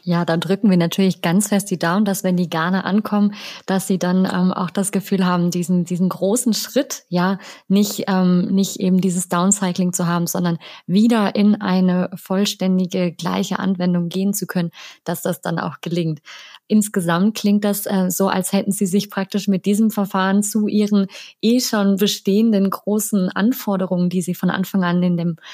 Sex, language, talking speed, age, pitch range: female, German, 180 wpm, 20-39, 180-200 Hz